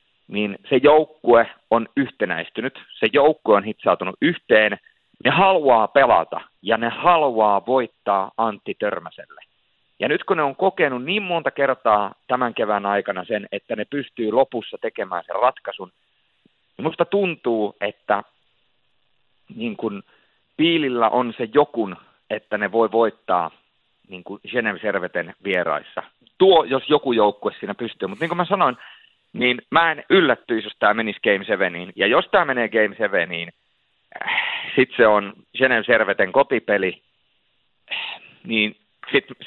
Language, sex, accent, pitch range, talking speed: Finnish, male, native, 105-145 Hz, 130 wpm